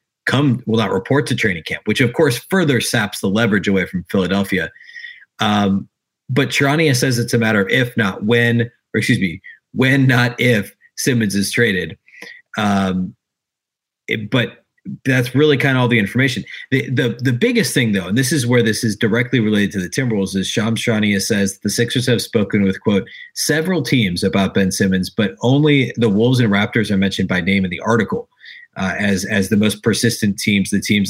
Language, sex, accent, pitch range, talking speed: English, male, American, 100-125 Hz, 195 wpm